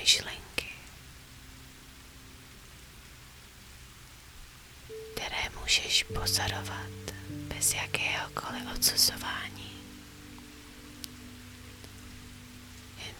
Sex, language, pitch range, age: female, Czech, 65-100 Hz, 30-49